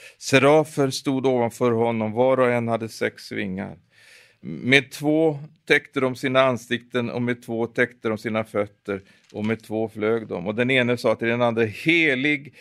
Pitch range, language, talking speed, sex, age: 110-135 Hz, Swedish, 170 wpm, male, 50-69